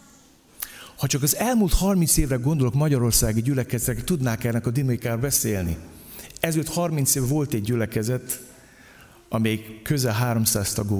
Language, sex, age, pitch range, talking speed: Hungarian, male, 50-69, 95-140 Hz, 130 wpm